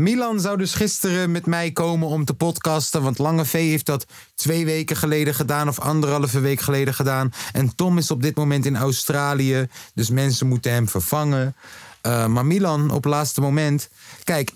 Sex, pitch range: male, 115-155 Hz